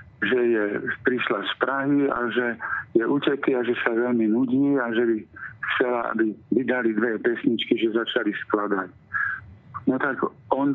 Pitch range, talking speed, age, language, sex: 115-135 Hz, 155 wpm, 50-69, Slovak, male